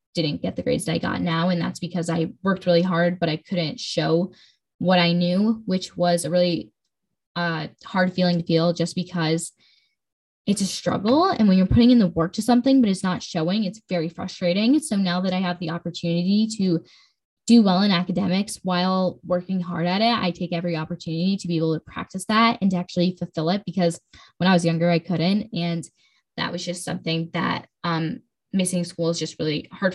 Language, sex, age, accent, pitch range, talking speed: English, female, 10-29, American, 170-200 Hz, 210 wpm